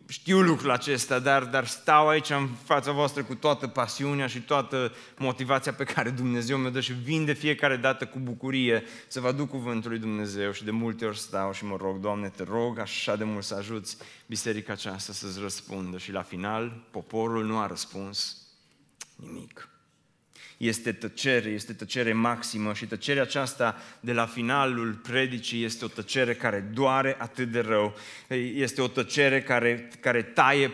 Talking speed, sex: 170 wpm, male